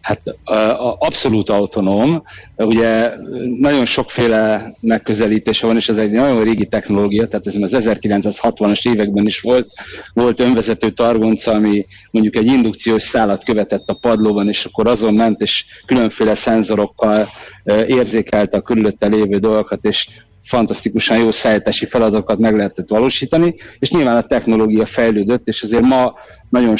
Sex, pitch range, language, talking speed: male, 105-120 Hz, Hungarian, 140 wpm